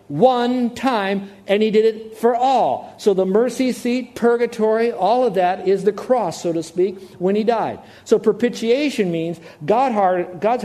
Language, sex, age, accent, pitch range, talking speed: English, male, 50-69, American, 160-225 Hz, 165 wpm